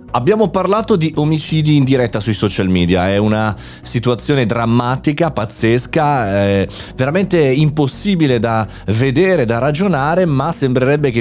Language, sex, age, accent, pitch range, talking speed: Italian, male, 30-49, native, 105-150 Hz, 130 wpm